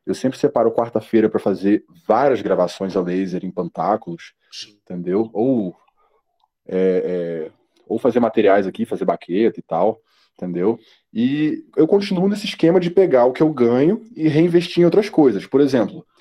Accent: Brazilian